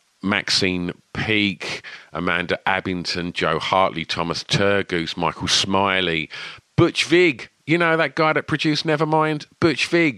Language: English